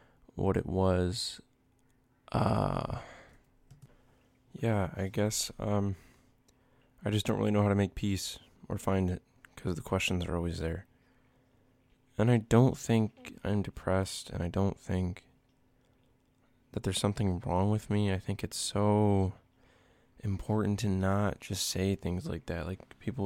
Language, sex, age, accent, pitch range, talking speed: English, male, 20-39, American, 95-115 Hz, 145 wpm